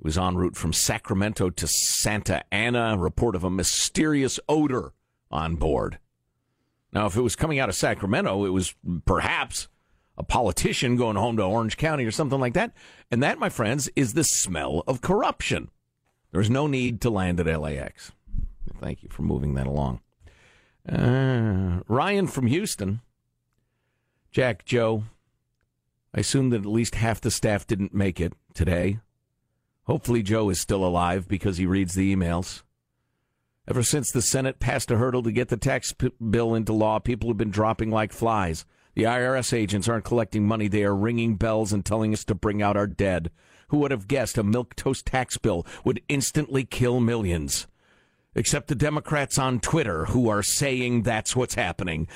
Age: 50-69